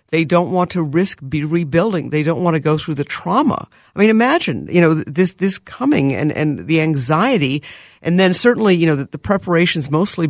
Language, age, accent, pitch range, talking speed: English, 50-69, American, 155-195 Hz, 210 wpm